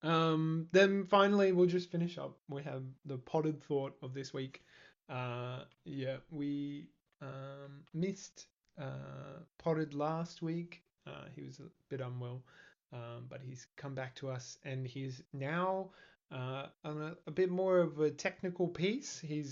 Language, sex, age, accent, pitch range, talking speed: English, male, 20-39, Australian, 125-155 Hz, 155 wpm